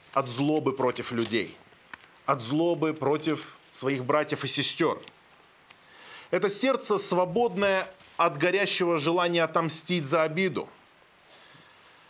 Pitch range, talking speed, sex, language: 155-210 Hz, 100 wpm, male, Russian